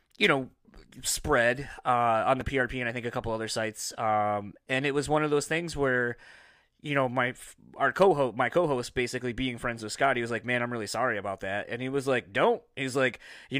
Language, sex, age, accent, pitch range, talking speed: English, male, 20-39, American, 115-140 Hz, 230 wpm